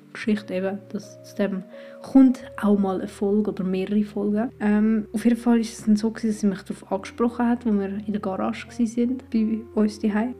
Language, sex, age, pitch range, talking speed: German, female, 20-39, 205-230 Hz, 220 wpm